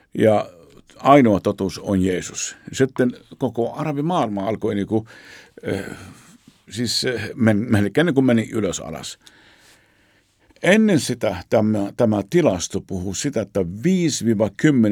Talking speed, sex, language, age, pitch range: 110 wpm, male, Finnish, 50-69, 95-120 Hz